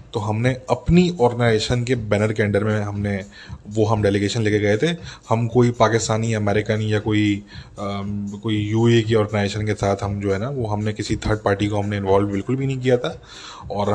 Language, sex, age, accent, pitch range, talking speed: English, male, 20-39, Indian, 105-125 Hz, 200 wpm